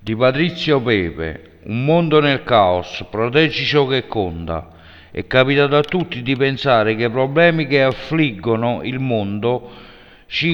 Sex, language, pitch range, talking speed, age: male, Italian, 115-150 Hz, 140 wpm, 50-69